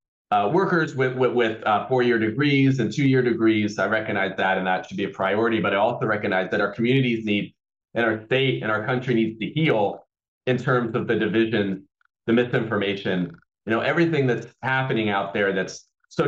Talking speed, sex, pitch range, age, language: 195 wpm, male, 100-120 Hz, 30-49, English